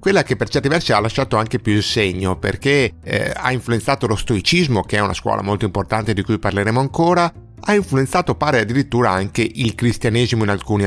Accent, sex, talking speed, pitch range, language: native, male, 200 wpm, 100-125 Hz, Italian